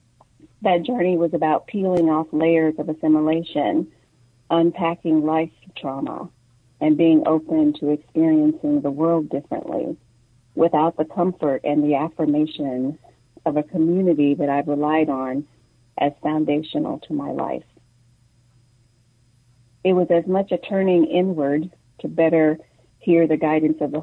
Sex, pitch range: female, 135-165 Hz